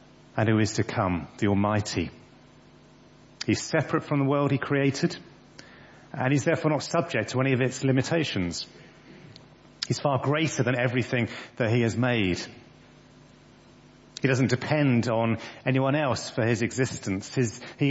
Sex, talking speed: male, 145 wpm